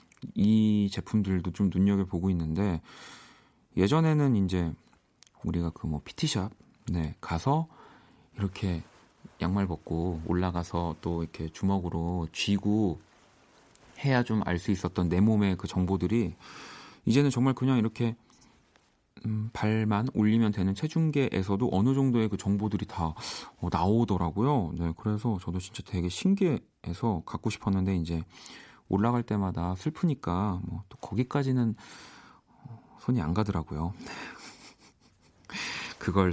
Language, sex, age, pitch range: Korean, male, 40-59, 90-125 Hz